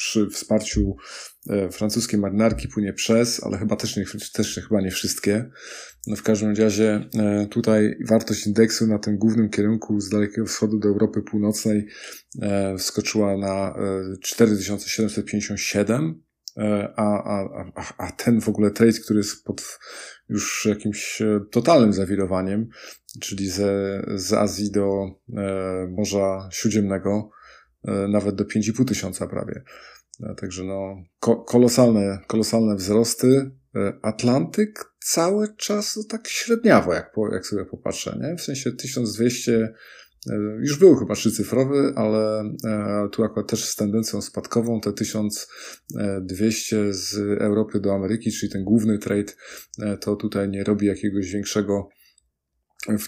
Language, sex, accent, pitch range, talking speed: Polish, male, native, 100-110 Hz, 125 wpm